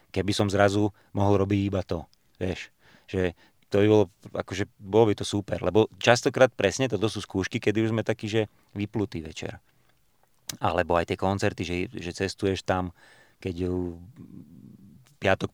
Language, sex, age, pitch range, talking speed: Slovak, male, 30-49, 95-110 Hz, 155 wpm